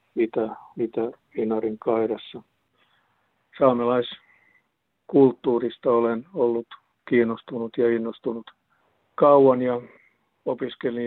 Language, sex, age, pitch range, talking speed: Finnish, male, 50-69, 110-125 Hz, 65 wpm